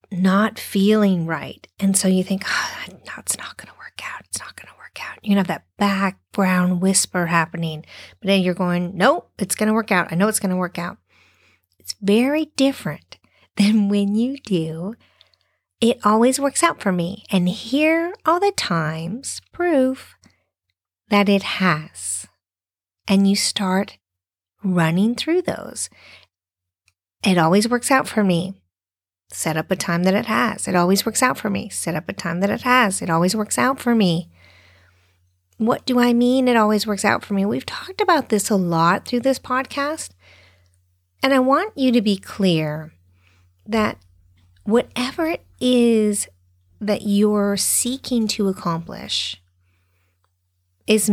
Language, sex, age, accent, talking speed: English, female, 40-59, American, 165 wpm